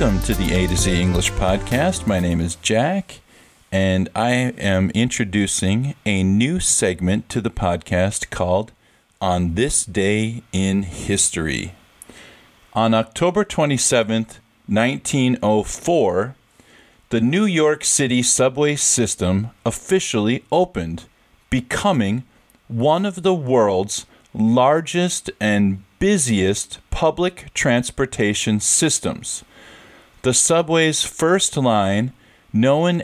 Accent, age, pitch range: American, 40-59, 100-130 Hz